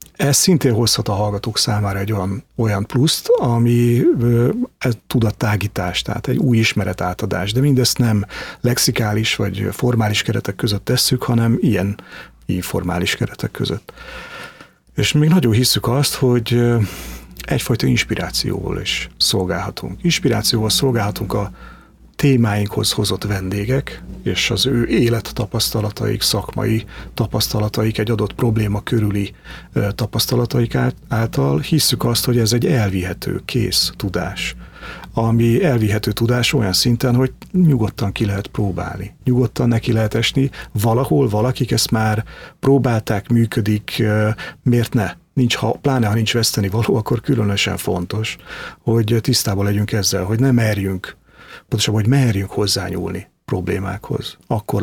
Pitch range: 105-125 Hz